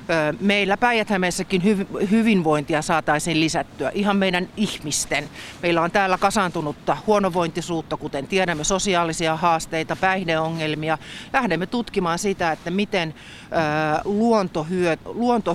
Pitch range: 160-195 Hz